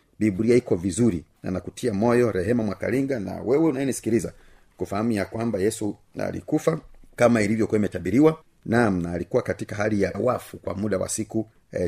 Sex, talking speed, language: male, 155 wpm, Swahili